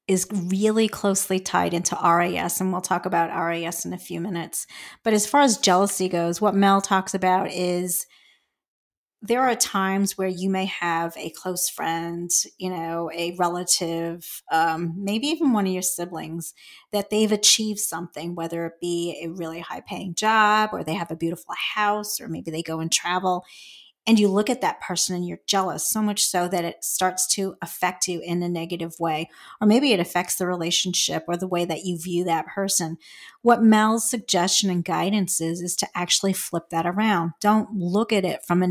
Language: English